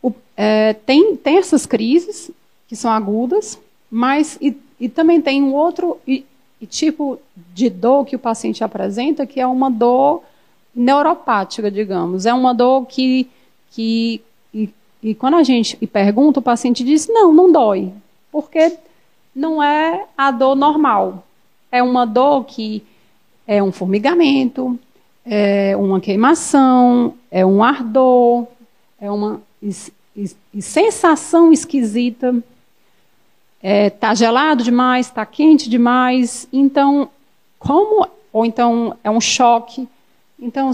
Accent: Brazilian